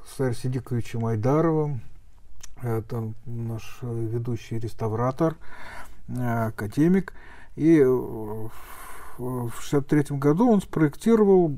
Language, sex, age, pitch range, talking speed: Russian, male, 50-69, 115-155 Hz, 75 wpm